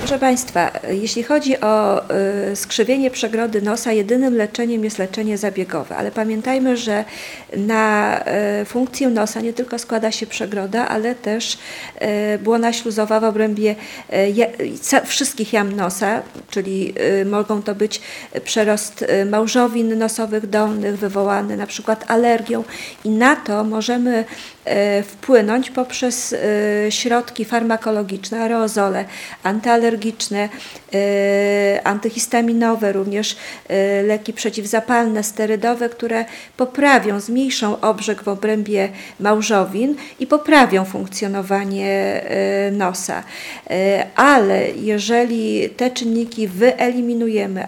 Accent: native